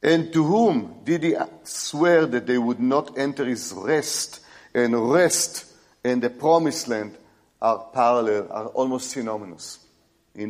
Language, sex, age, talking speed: English, male, 50-69, 145 wpm